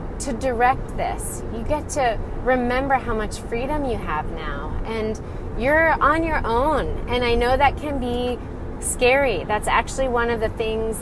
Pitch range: 185-245 Hz